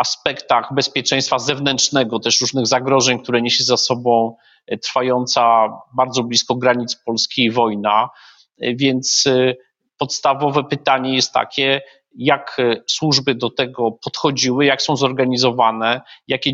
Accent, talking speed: native, 115 wpm